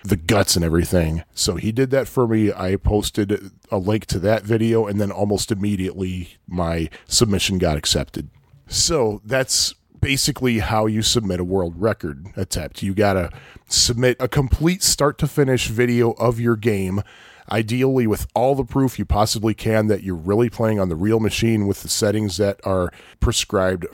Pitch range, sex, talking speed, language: 95-125 Hz, male, 175 wpm, English